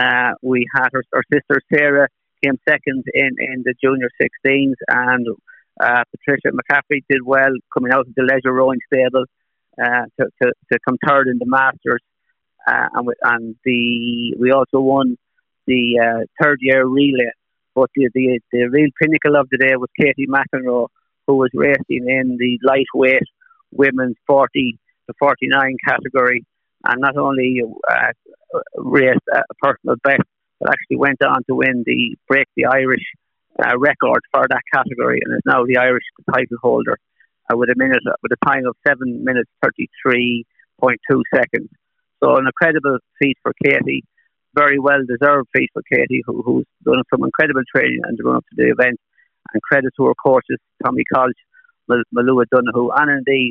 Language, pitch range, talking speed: English, 125-140 Hz, 170 wpm